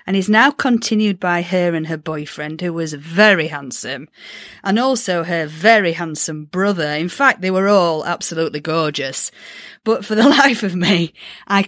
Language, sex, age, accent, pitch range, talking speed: English, female, 40-59, British, 175-240 Hz, 170 wpm